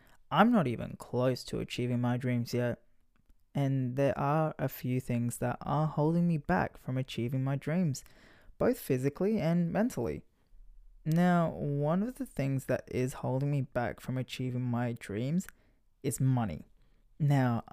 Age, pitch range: 20-39, 120-150 Hz